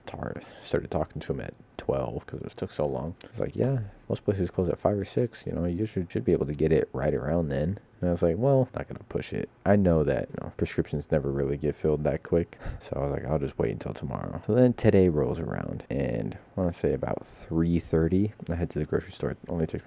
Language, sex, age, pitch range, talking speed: English, male, 20-39, 75-105 Hz, 265 wpm